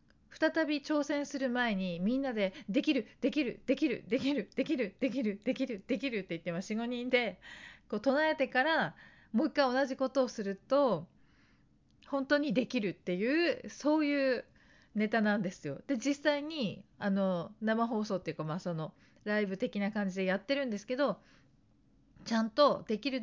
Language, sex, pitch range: Japanese, female, 190-270 Hz